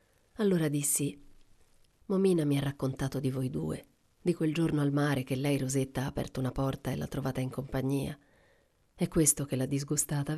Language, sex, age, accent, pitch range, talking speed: Italian, female, 40-59, native, 140-185 Hz, 180 wpm